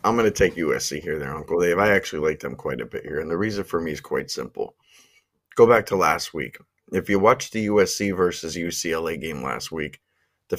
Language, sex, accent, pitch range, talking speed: English, male, American, 90-105 Hz, 230 wpm